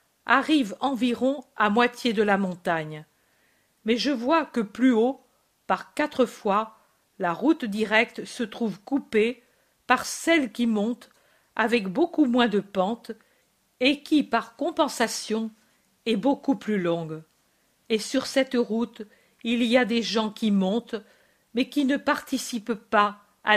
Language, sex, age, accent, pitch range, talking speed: French, female, 50-69, French, 205-250 Hz, 145 wpm